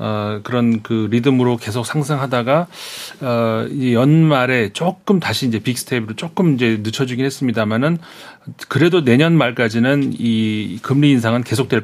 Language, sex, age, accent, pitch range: Korean, male, 40-59, native, 115-145 Hz